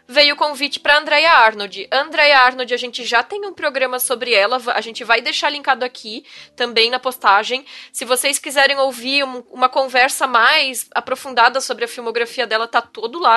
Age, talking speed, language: 10-29, 185 wpm, Portuguese